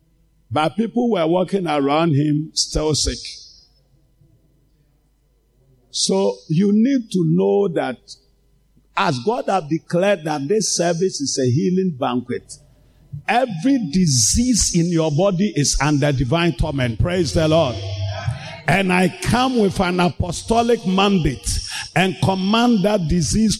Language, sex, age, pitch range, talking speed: English, male, 50-69, 140-190 Hz, 120 wpm